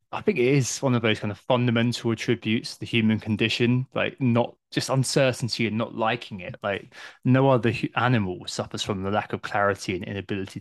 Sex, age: male, 20-39